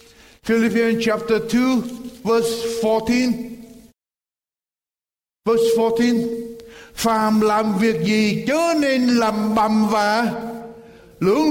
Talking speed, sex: 90 wpm, male